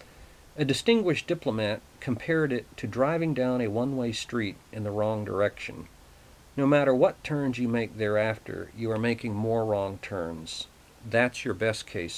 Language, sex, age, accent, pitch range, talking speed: English, male, 50-69, American, 105-130 Hz, 155 wpm